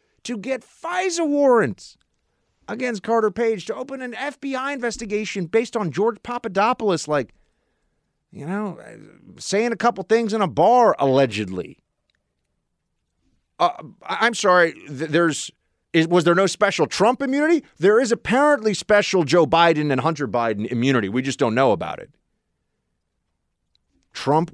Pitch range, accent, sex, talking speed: 125-210 Hz, American, male, 130 wpm